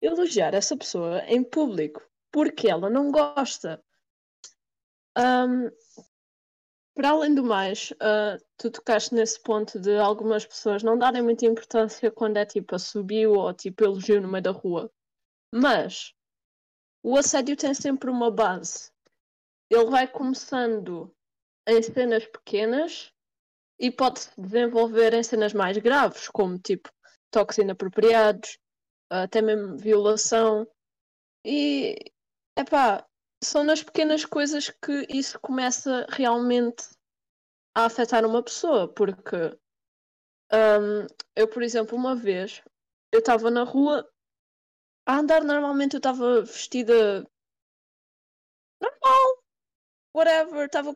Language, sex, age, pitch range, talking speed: English, female, 20-39, 215-275 Hz, 120 wpm